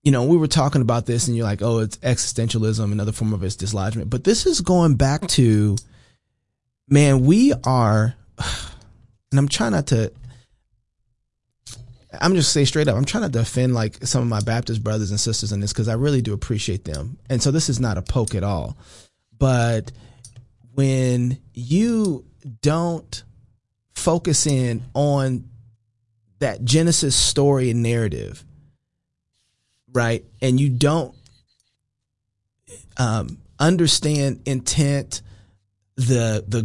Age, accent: 30-49, American